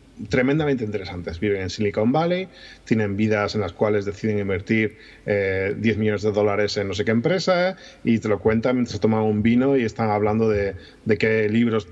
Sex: male